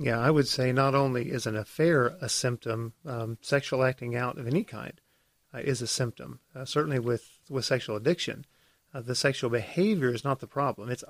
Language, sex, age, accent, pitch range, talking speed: English, male, 40-59, American, 120-140 Hz, 200 wpm